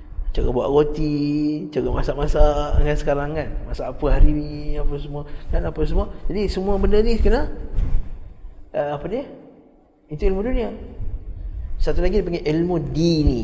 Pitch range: 120-175 Hz